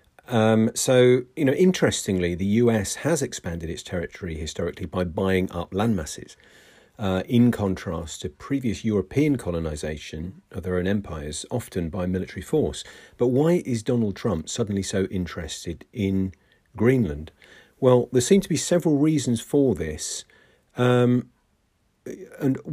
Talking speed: 135 wpm